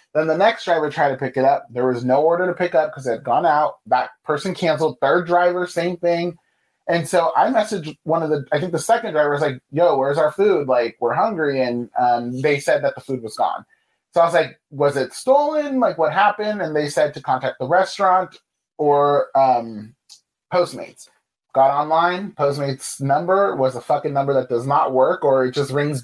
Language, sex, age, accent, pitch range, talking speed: English, male, 30-49, American, 135-175 Hz, 215 wpm